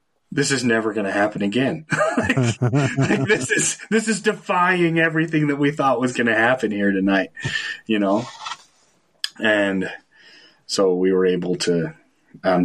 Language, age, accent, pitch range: English, 30-49, American, 80-100 Hz